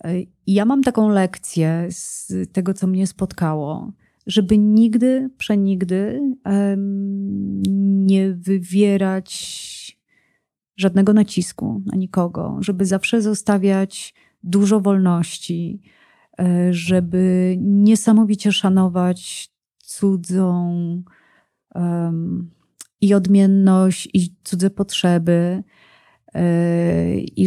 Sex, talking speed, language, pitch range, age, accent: female, 70 wpm, Polish, 175-200 Hz, 30-49, native